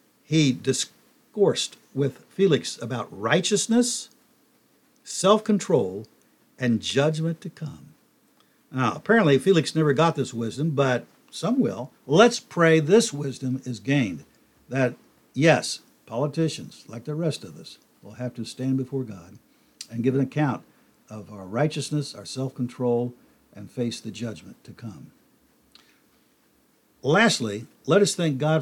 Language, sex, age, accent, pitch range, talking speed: English, male, 60-79, American, 120-170 Hz, 130 wpm